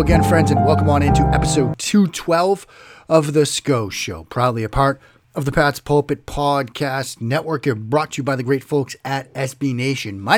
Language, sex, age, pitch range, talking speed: English, male, 30-49, 120-145 Hz, 190 wpm